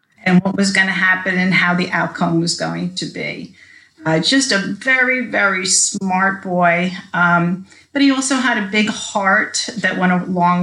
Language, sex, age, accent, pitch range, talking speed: English, female, 40-59, American, 180-215 Hz, 175 wpm